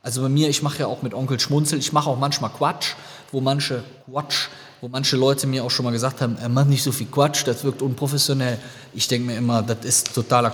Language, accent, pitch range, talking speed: German, German, 115-140 Hz, 235 wpm